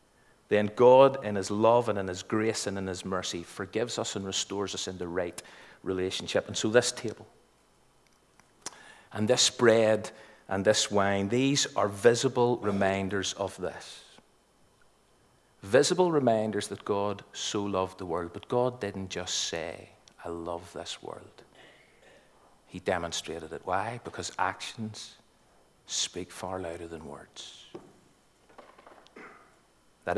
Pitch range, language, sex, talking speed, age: 95-115 Hz, English, male, 135 wpm, 50-69